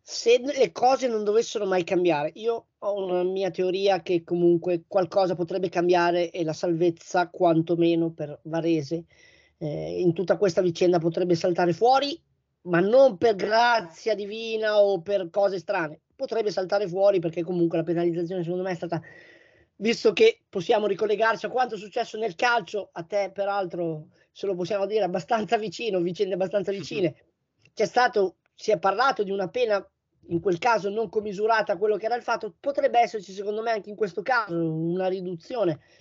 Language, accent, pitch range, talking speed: Italian, native, 180-225 Hz, 170 wpm